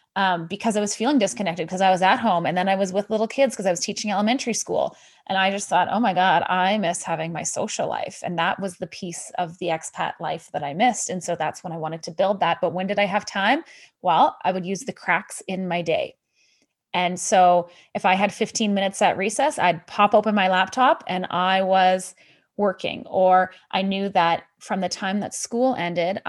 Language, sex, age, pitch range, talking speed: English, female, 20-39, 180-210 Hz, 230 wpm